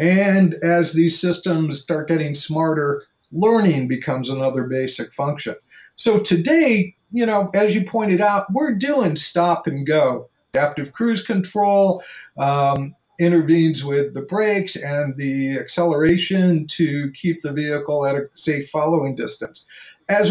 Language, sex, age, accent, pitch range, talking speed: English, male, 50-69, American, 145-190 Hz, 135 wpm